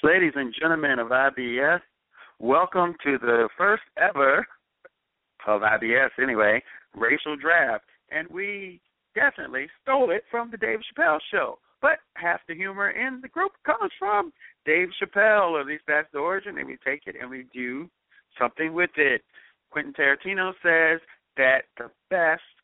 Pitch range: 150-200 Hz